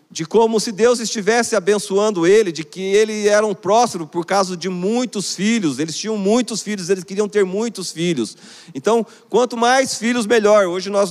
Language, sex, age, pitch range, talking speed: Portuguese, male, 40-59, 190-235 Hz, 185 wpm